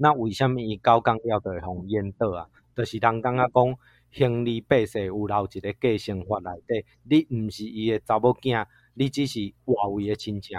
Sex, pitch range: male, 105-125 Hz